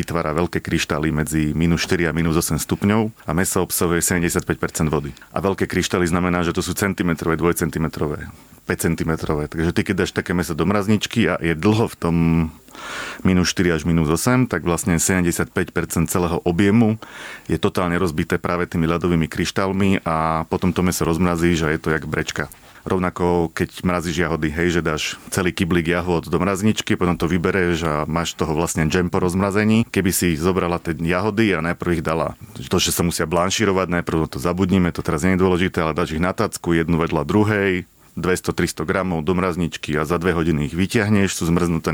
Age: 30-49